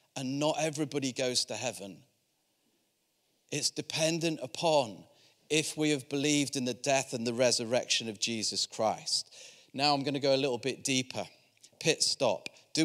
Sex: male